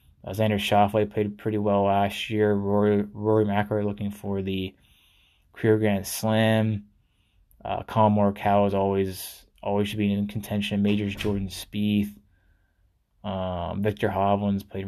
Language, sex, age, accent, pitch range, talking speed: English, male, 20-39, American, 95-105 Hz, 135 wpm